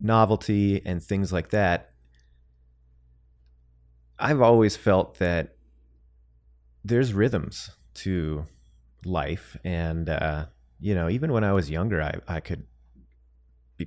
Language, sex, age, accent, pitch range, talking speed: English, male, 30-49, American, 75-100 Hz, 110 wpm